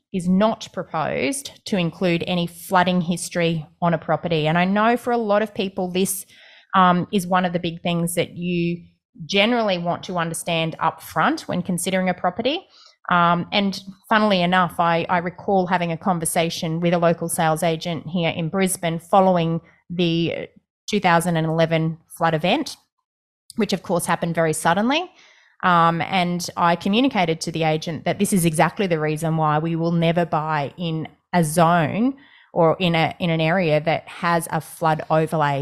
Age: 20-39